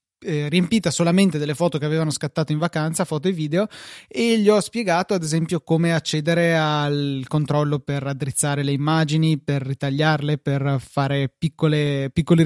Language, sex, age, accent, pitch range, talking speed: Italian, male, 20-39, native, 145-170 Hz, 150 wpm